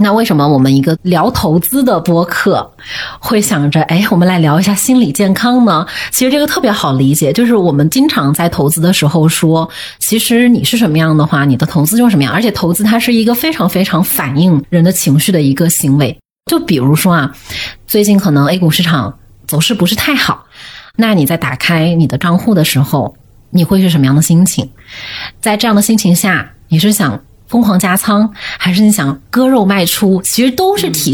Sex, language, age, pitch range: female, Chinese, 20-39, 155-215 Hz